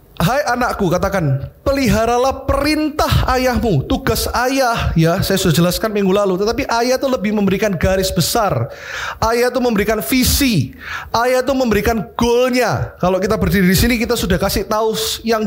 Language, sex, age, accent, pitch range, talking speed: Indonesian, male, 30-49, native, 170-235 Hz, 150 wpm